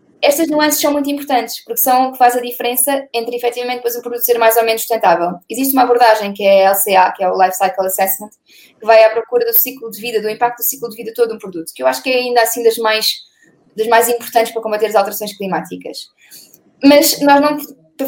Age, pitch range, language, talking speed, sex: 20-39, 220-275 Hz, Portuguese, 240 wpm, female